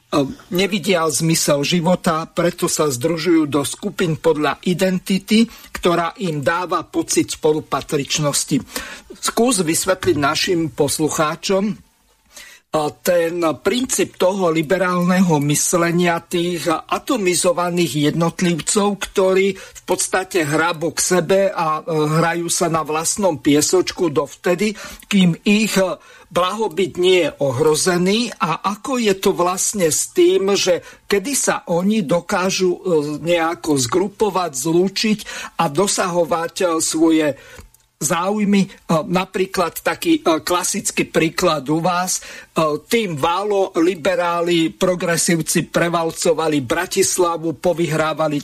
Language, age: Slovak, 50-69